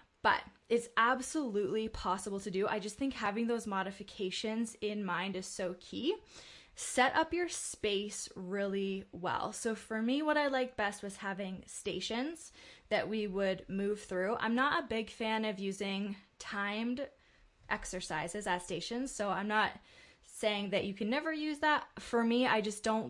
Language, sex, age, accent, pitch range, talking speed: English, female, 20-39, American, 190-225 Hz, 165 wpm